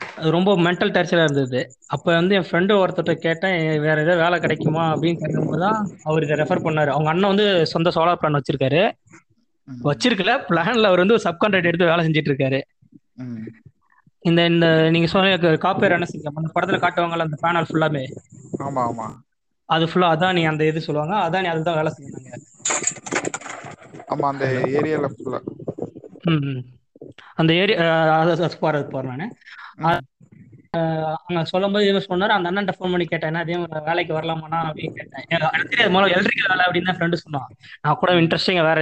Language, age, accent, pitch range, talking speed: Tamil, 20-39, native, 155-180 Hz, 115 wpm